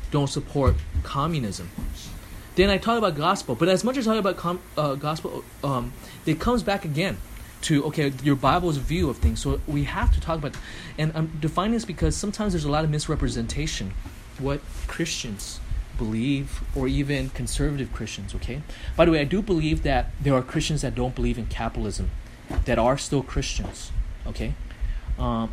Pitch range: 120-165 Hz